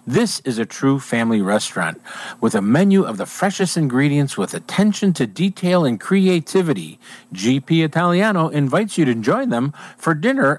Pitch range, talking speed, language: 145-210 Hz, 160 wpm, English